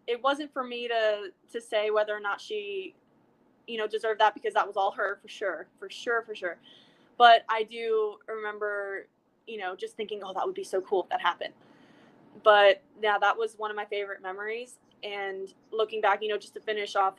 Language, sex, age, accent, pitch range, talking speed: English, female, 20-39, American, 195-255 Hz, 215 wpm